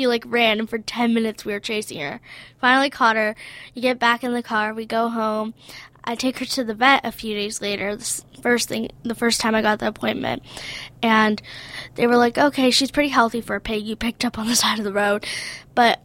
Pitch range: 215-245 Hz